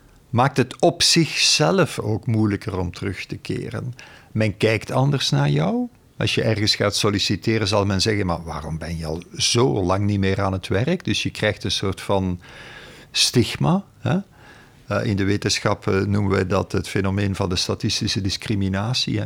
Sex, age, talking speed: male, 50-69, 170 wpm